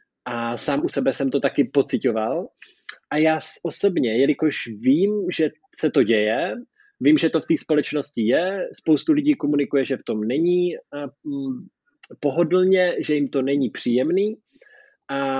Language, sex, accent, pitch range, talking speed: Czech, male, native, 130-165 Hz, 150 wpm